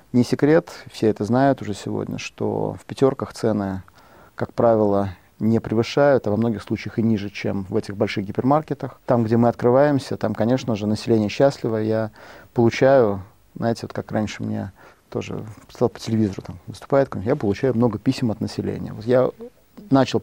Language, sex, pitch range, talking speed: Russian, male, 105-130 Hz, 165 wpm